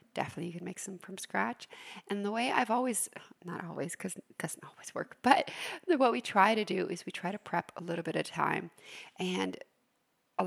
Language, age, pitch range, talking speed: English, 30-49, 175-225 Hz, 200 wpm